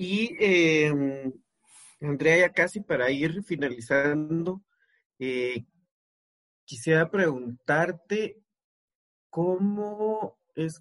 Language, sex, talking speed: Spanish, male, 70 wpm